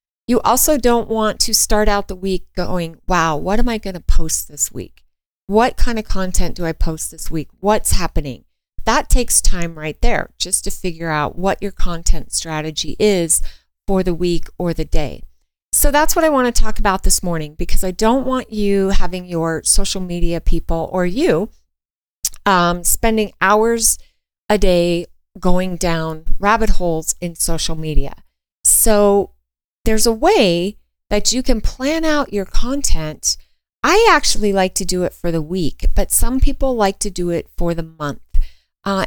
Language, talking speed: English, 175 wpm